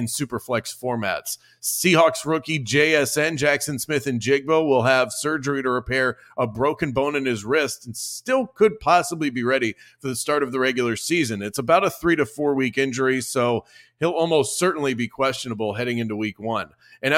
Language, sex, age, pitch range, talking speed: English, male, 30-49, 125-145 Hz, 180 wpm